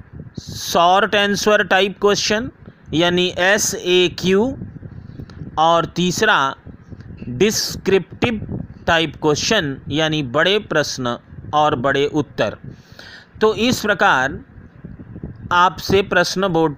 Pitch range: 150-195 Hz